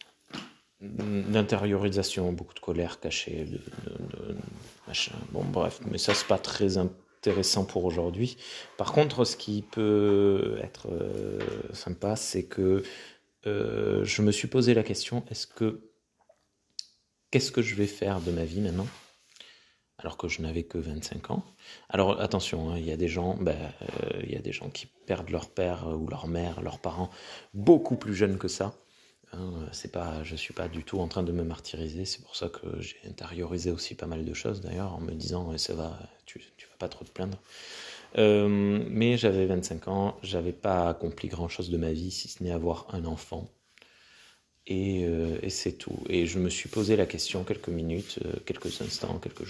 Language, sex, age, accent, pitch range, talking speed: French, male, 30-49, French, 85-105 Hz, 185 wpm